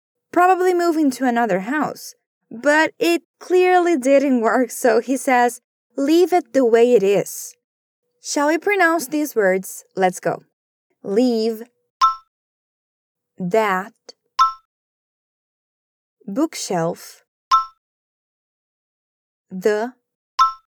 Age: 20-39